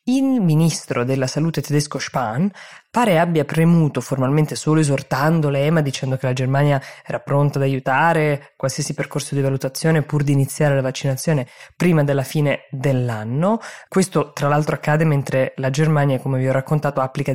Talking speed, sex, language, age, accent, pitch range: 160 wpm, female, Italian, 20-39, native, 130-160 Hz